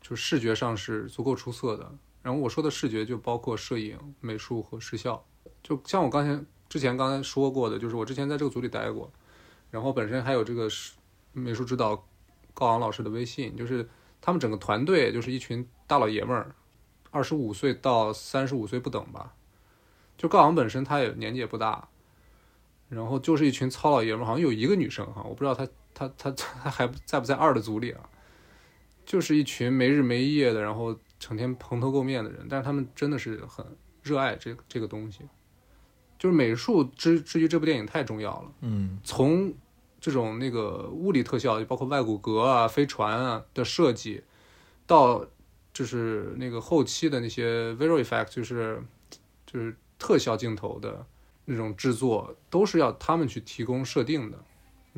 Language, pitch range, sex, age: Chinese, 110-140 Hz, male, 20-39